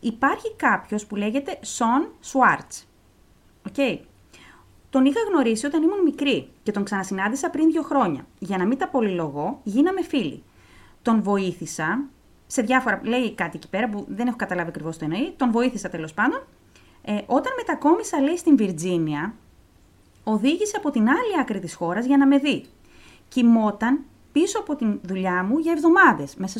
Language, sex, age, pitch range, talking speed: Greek, female, 30-49, 200-290 Hz, 160 wpm